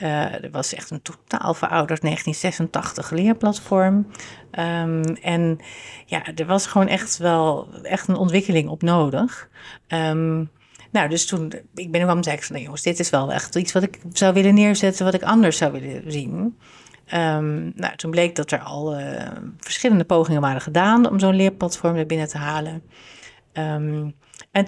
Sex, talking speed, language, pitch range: female, 170 wpm, Dutch, 155-195 Hz